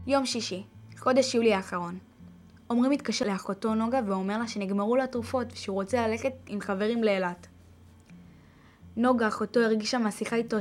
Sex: female